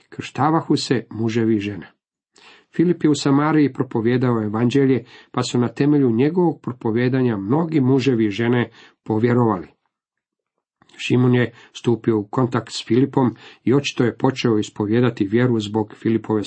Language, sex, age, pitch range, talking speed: Croatian, male, 50-69, 115-140 Hz, 135 wpm